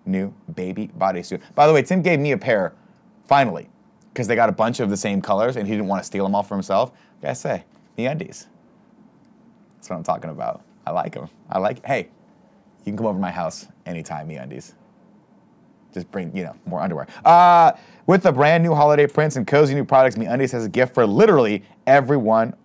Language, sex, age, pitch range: English, male, 30-49, 100-150 Hz